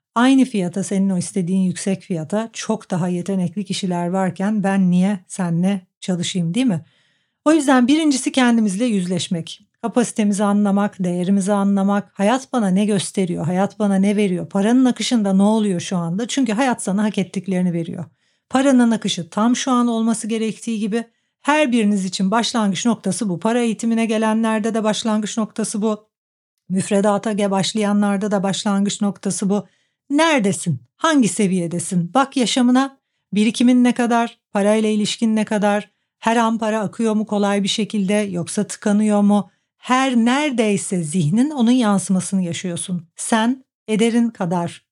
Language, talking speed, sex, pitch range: Turkish, 145 wpm, female, 190-235 Hz